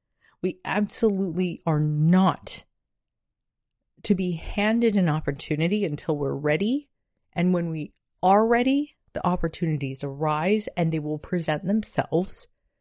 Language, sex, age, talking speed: English, female, 30-49, 115 wpm